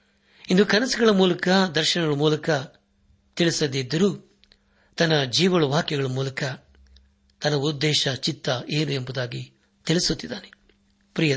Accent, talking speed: native, 85 wpm